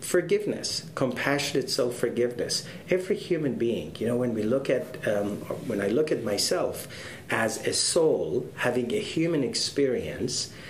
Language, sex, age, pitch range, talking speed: English, male, 40-59, 110-140 Hz, 140 wpm